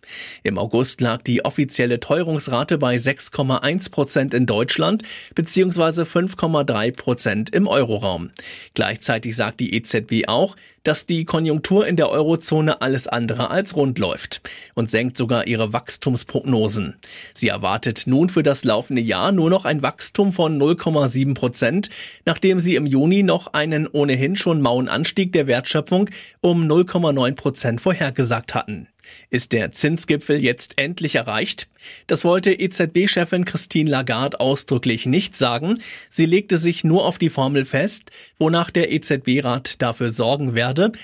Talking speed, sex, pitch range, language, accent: 140 wpm, male, 125-175 Hz, German, German